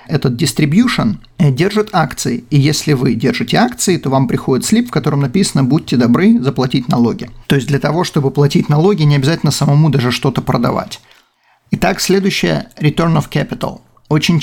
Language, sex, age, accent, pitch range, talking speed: Russian, male, 40-59, native, 140-180 Hz, 160 wpm